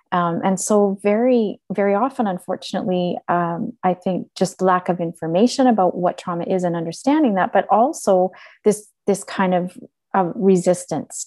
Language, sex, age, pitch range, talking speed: English, female, 30-49, 170-200 Hz, 155 wpm